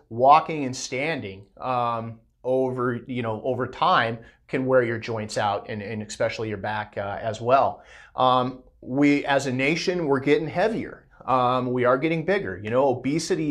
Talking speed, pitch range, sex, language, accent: 170 wpm, 120-145 Hz, male, English, American